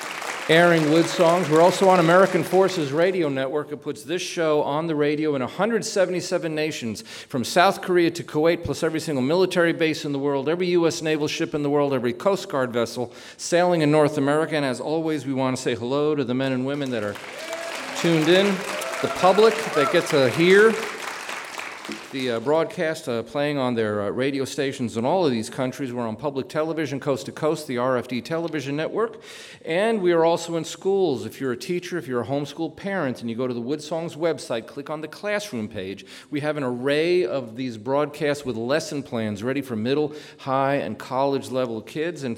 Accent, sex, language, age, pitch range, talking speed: American, male, English, 40-59, 130-165 Hz, 200 wpm